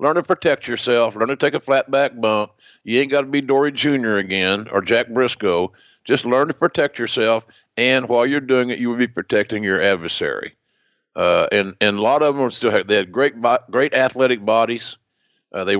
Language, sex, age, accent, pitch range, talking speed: English, male, 50-69, American, 100-125 Hz, 215 wpm